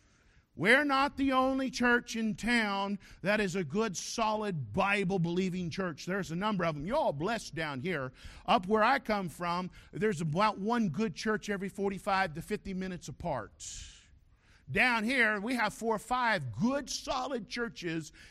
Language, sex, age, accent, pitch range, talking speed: English, male, 50-69, American, 180-255 Hz, 165 wpm